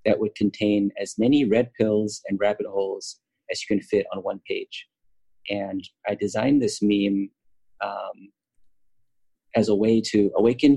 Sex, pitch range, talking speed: male, 100-145 Hz, 155 wpm